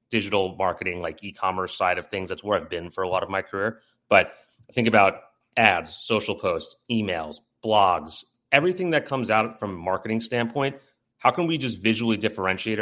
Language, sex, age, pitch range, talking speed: English, male, 30-49, 95-120 Hz, 185 wpm